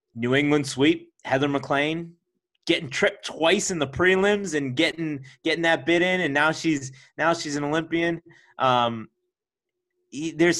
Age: 20-39